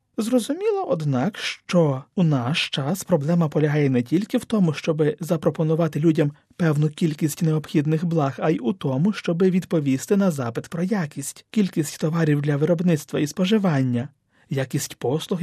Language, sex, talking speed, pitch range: Ukrainian, male, 145 wpm, 140-185 Hz